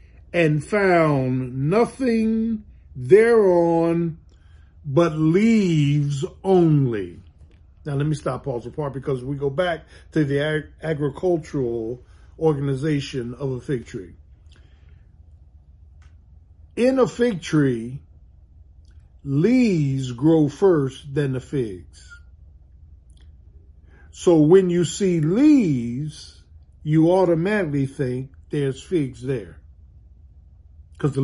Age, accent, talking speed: 50-69, American, 90 wpm